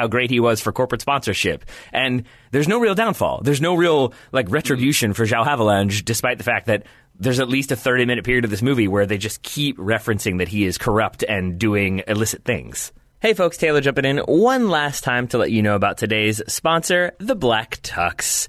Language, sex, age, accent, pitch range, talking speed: English, male, 30-49, American, 105-135 Hz, 210 wpm